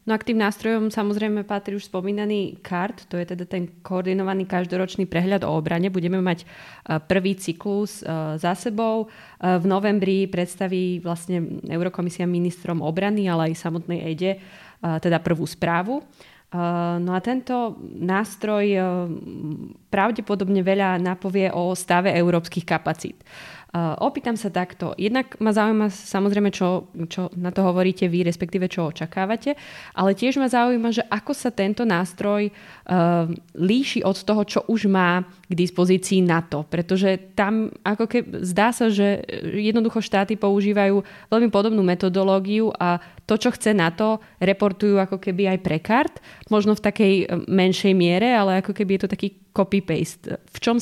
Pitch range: 180-210 Hz